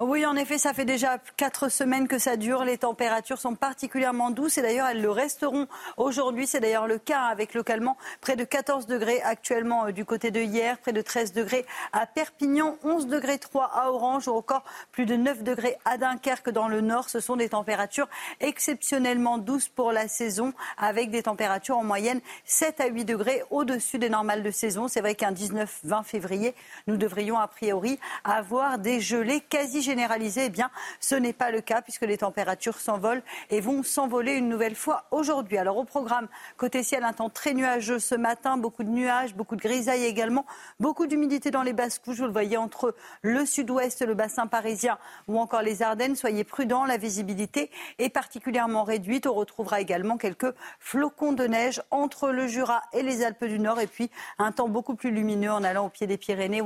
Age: 40-59